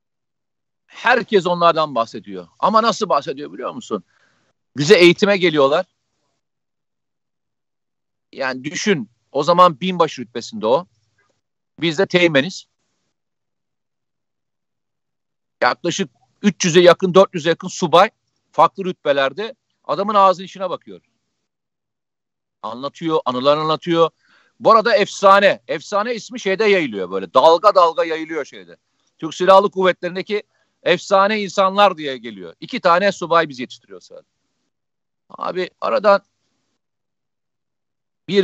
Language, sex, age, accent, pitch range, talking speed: Turkish, male, 50-69, native, 155-200 Hz, 100 wpm